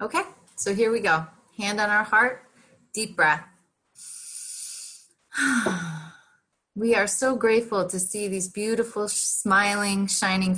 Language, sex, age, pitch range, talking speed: English, female, 20-39, 170-205 Hz, 120 wpm